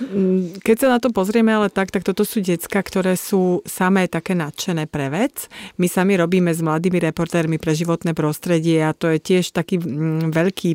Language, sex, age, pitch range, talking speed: Slovak, female, 30-49, 160-190 Hz, 185 wpm